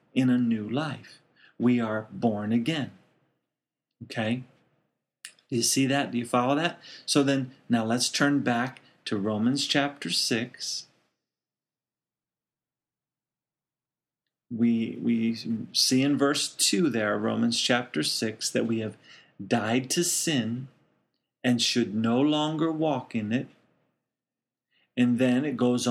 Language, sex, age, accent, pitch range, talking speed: English, male, 40-59, American, 120-140 Hz, 125 wpm